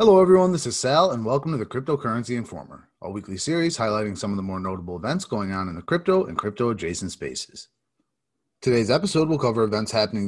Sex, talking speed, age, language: male, 205 wpm, 30-49, English